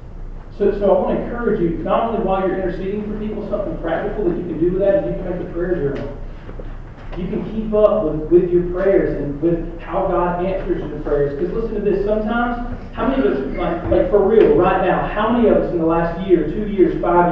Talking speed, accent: 240 wpm, American